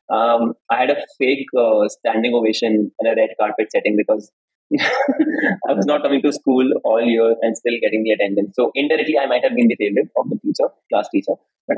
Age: 20-39